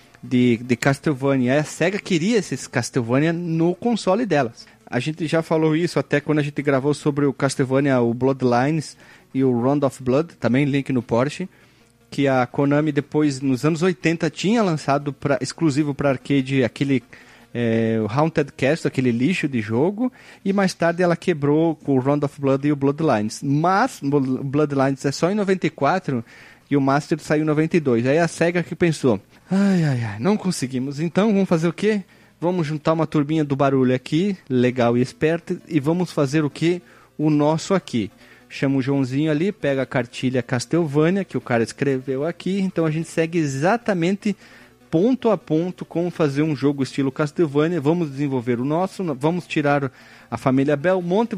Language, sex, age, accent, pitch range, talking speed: Portuguese, male, 30-49, Brazilian, 135-170 Hz, 175 wpm